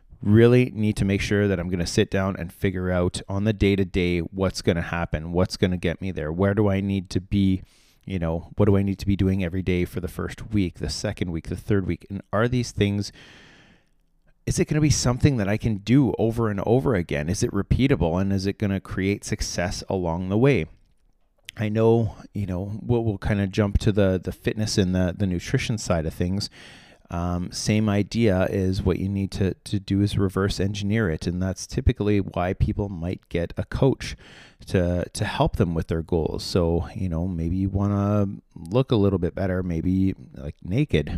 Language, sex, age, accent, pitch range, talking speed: English, male, 30-49, American, 90-105 Hz, 220 wpm